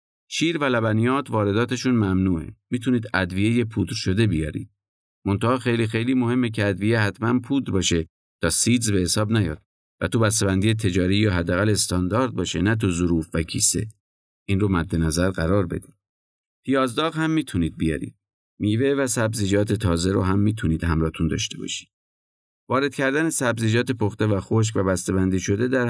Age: 50-69